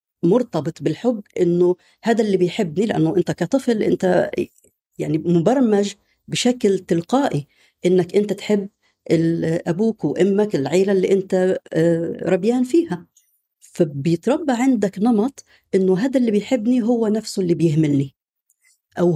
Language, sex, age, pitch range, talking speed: Arabic, female, 50-69, 170-220 Hz, 115 wpm